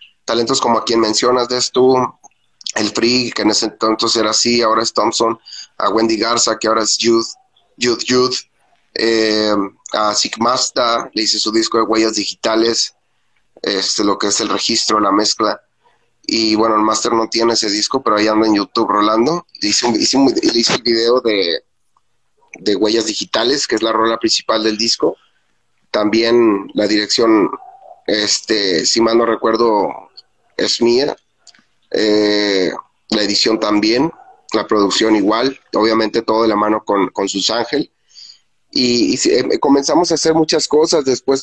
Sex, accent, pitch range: male, Mexican, 105-120 Hz